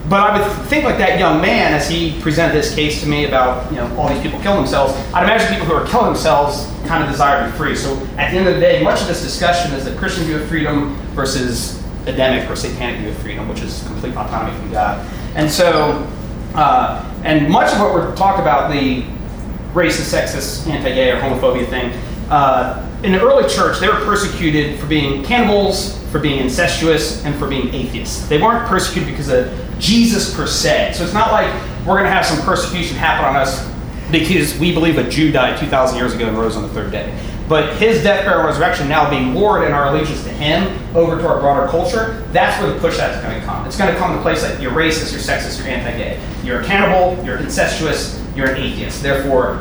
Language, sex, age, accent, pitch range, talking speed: English, male, 30-49, American, 135-175 Hz, 225 wpm